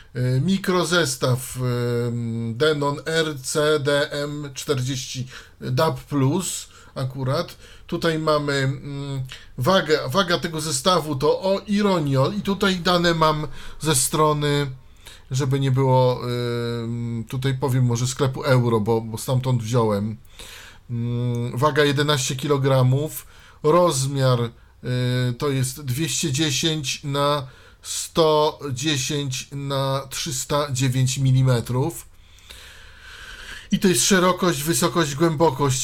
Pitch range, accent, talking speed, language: 125-155 Hz, native, 85 wpm, Polish